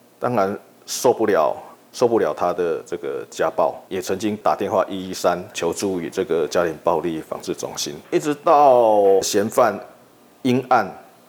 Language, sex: Chinese, male